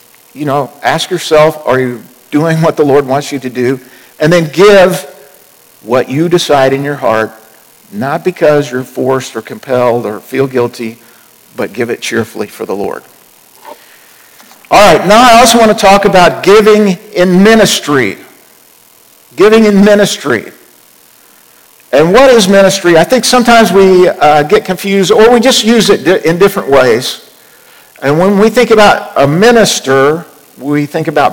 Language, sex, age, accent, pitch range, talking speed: English, male, 50-69, American, 145-200 Hz, 160 wpm